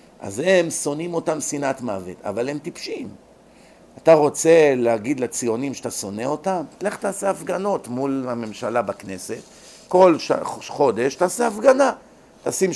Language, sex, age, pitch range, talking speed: Hebrew, male, 50-69, 125-160 Hz, 130 wpm